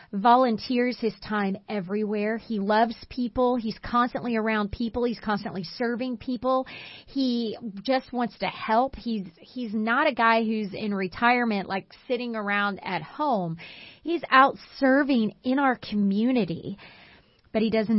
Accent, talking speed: American, 140 wpm